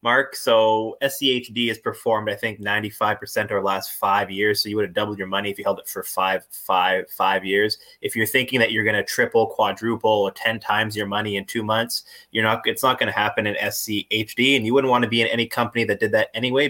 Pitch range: 100-125 Hz